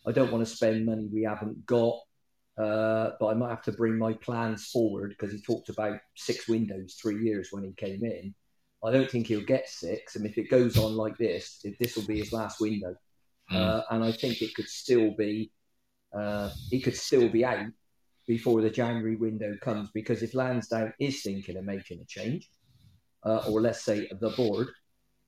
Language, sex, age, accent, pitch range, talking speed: English, male, 40-59, British, 105-120 Hz, 205 wpm